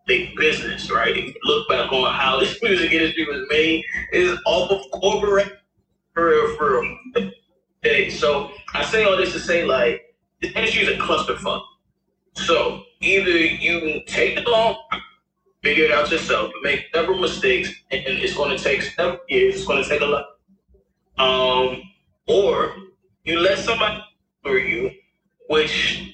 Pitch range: 160-255 Hz